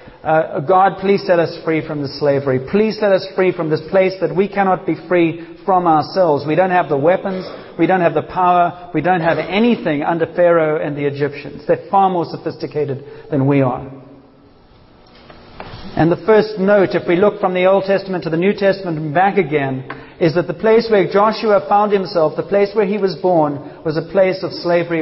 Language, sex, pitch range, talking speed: English, male, 160-200 Hz, 205 wpm